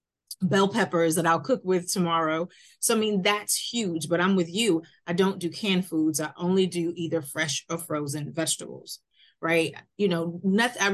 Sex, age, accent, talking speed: female, 30-49, American, 180 wpm